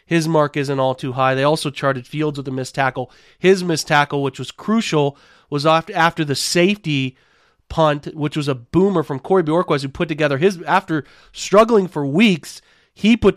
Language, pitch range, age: English, 140-170 Hz, 30-49